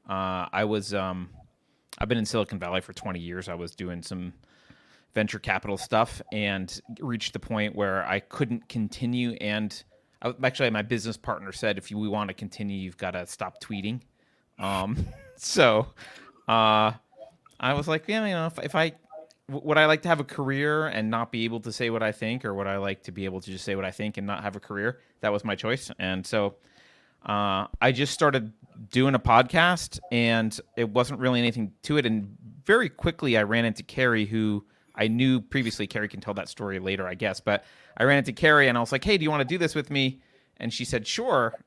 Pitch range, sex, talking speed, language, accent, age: 100-130 Hz, male, 220 wpm, English, American, 30-49